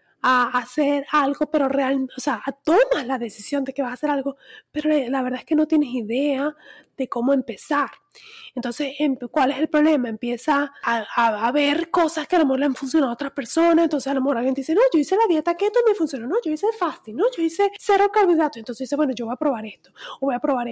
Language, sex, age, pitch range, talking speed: Spanish, female, 20-39, 255-325 Hz, 245 wpm